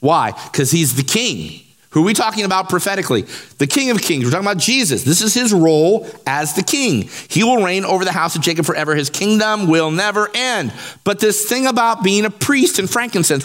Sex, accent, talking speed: male, American, 220 wpm